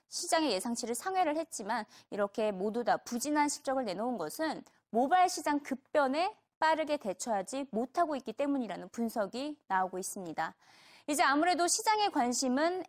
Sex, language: female, Korean